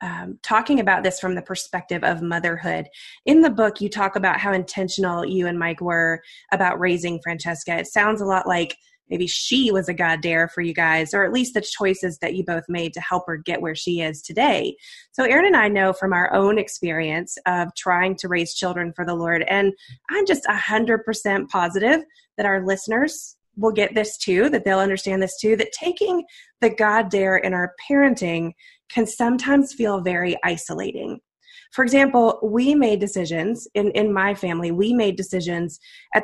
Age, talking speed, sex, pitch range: 20-39, 190 wpm, female, 180-225 Hz